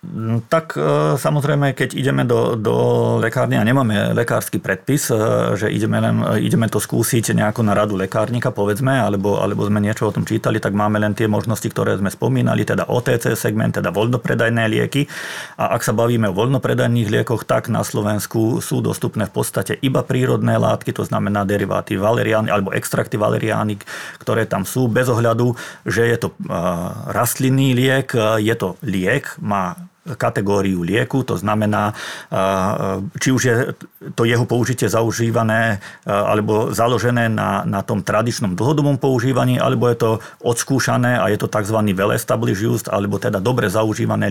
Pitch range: 105-125 Hz